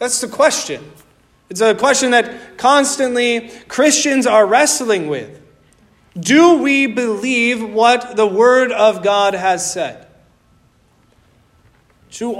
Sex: male